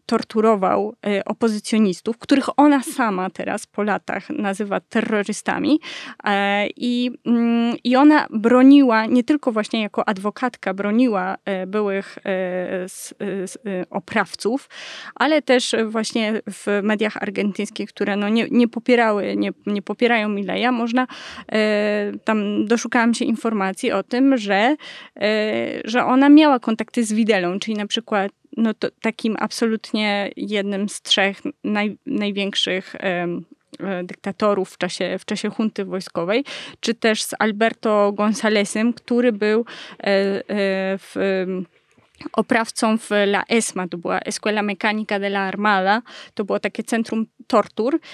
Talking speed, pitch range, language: 110 wpm, 200-235 Hz, Polish